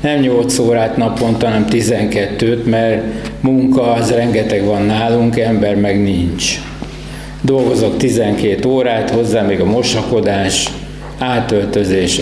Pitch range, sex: 100-135 Hz, male